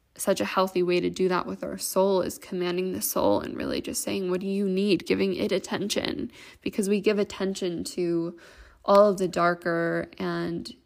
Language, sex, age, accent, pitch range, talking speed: English, female, 10-29, American, 175-200 Hz, 195 wpm